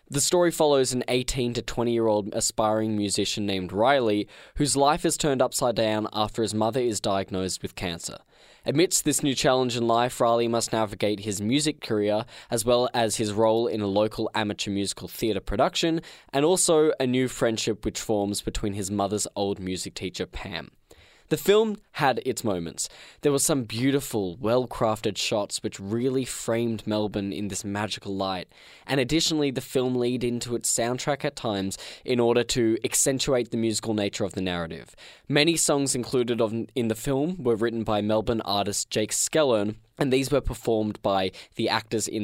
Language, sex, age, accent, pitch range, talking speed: English, male, 10-29, Australian, 100-125 Hz, 175 wpm